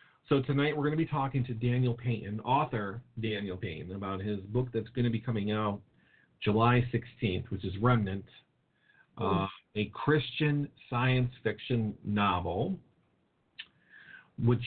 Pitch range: 105-125 Hz